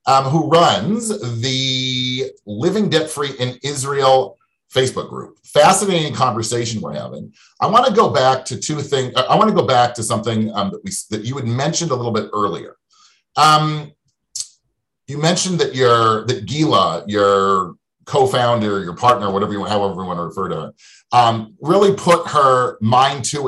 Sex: male